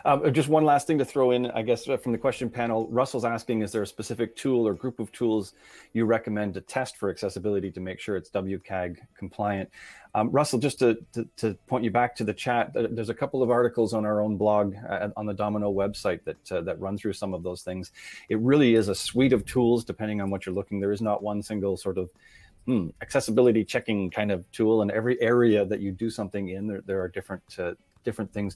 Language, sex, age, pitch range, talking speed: English, male, 30-49, 100-120 Hz, 235 wpm